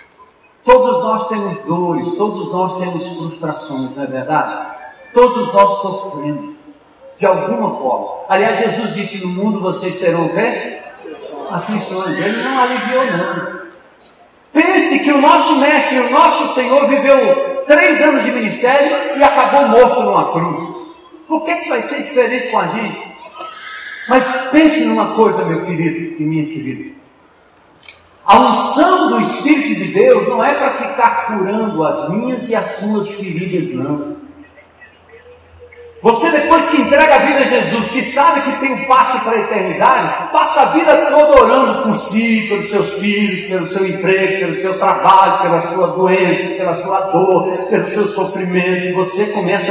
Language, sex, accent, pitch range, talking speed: Portuguese, male, Brazilian, 195-285 Hz, 160 wpm